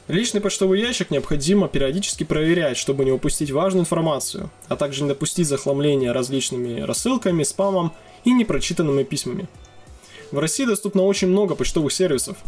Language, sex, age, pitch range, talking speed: Russian, male, 20-39, 140-195 Hz, 140 wpm